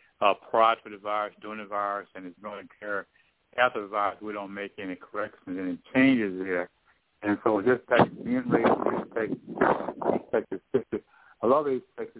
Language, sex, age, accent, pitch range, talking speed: English, male, 60-79, American, 100-115 Hz, 180 wpm